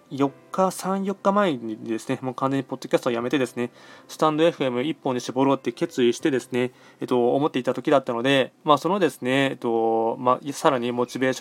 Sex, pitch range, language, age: male, 125-160 Hz, Japanese, 20-39